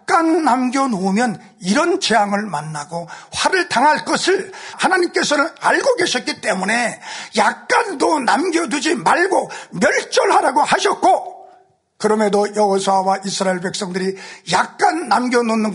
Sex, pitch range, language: male, 205-305 Hz, Korean